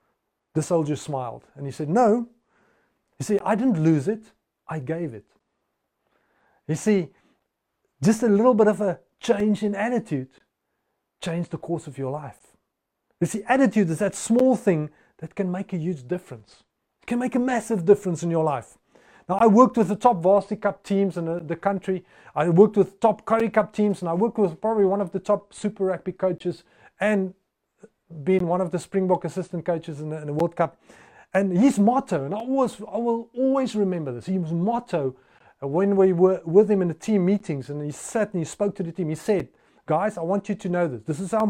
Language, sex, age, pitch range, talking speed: English, male, 30-49, 170-215 Hz, 210 wpm